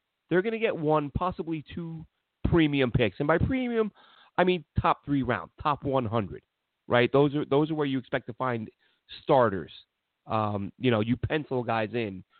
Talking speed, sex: 180 wpm, male